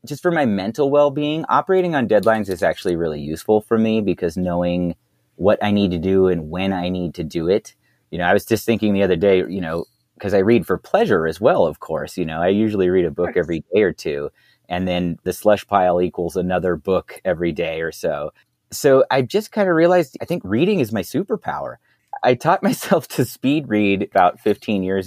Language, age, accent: English, 30-49, American